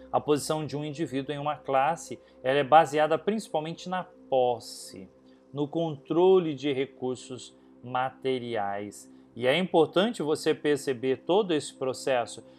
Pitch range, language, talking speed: 110-160 Hz, Portuguese, 130 wpm